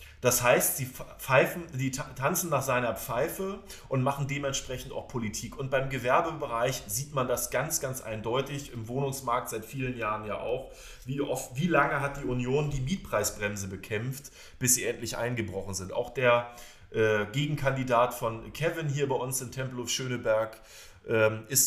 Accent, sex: German, male